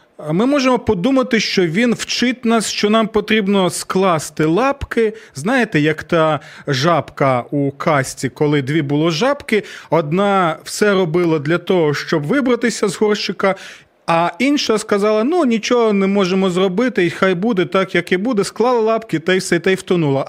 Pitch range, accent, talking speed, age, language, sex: 155-210 Hz, native, 160 wpm, 30-49, Ukrainian, male